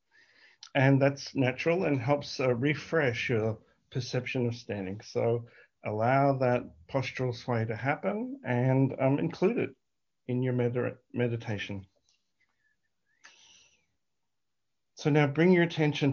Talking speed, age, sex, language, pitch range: 110 wpm, 50-69, male, English, 110-135 Hz